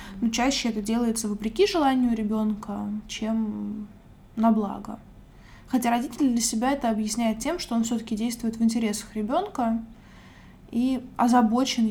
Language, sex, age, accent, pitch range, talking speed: Russian, female, 20-39, native, 220-255 Hz, 130 wpm